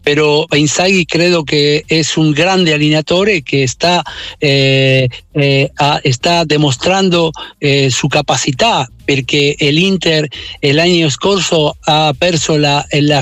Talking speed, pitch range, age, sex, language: 110 wpm, 140-165 Hz, 60-79, male, Italian